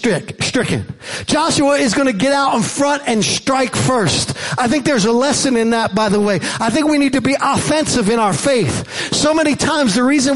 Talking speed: 215 wpm